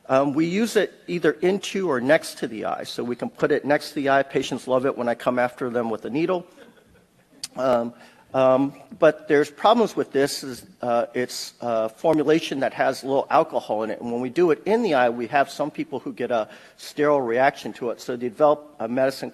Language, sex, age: English, male, 50-69